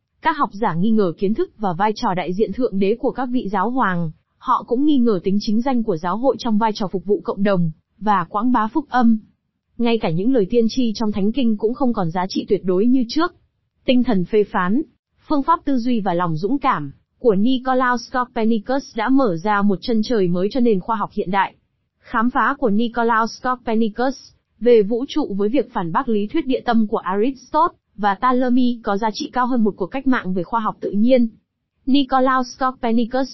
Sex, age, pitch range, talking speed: female, 20-39, 205-255 Hz, 220 wpm